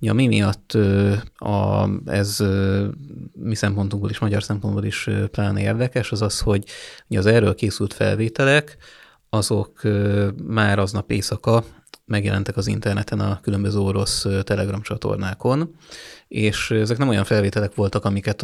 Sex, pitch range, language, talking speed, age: male, 100-110 Hz, Hungarian, 125 wpm, 30-49